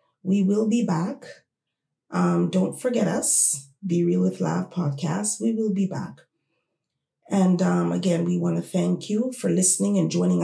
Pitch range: 165-200 Hz